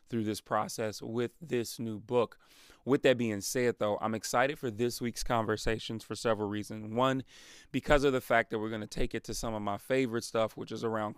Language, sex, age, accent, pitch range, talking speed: English, male, 30-49, American, 105-125 Hz, 220 wpm